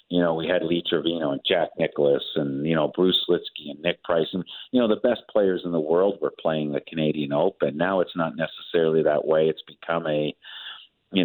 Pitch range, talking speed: 75-90 Hz, 220 wpm